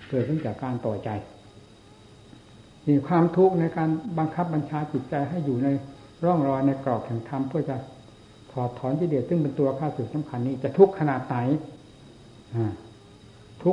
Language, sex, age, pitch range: Thai, male, 60-79, 115-150 Hz